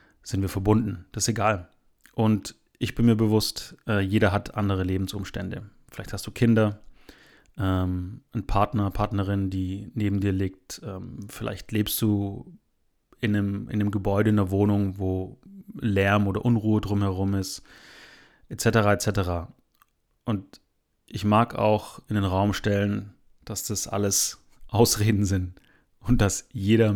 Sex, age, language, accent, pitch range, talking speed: male, 30-49, German, German, 95-110 Hz, 135 wpm